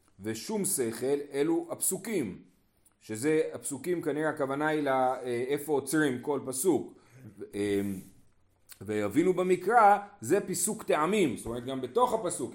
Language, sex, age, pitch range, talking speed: Hebrew, male, 30-49, 110-150 Hz, 120 wpm